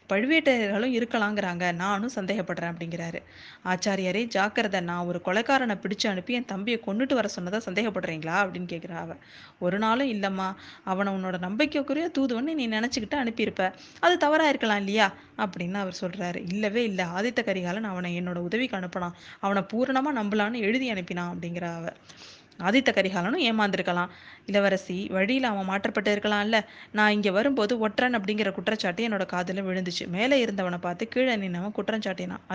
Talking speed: 135 wpm